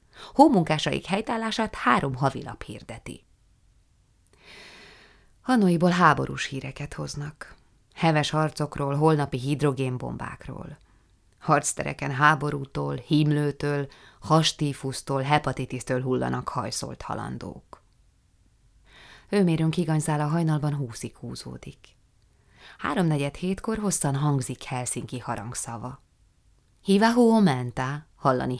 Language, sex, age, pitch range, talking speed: Hungarian, female, 20-39, 120-155 Hz, 75 wpm